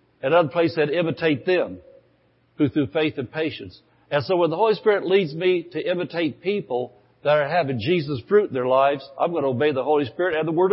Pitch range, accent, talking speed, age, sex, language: 145-190 Hz, American, 225 wpm, 60-79, male, English